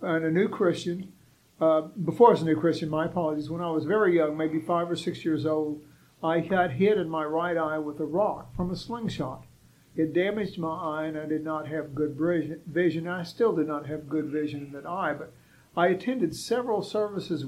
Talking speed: 215 wpm